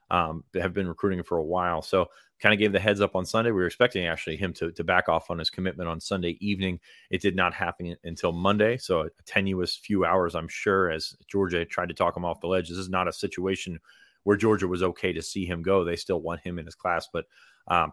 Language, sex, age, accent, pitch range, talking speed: English, male, 30-49, American, 85-100 Hz, 255 wpm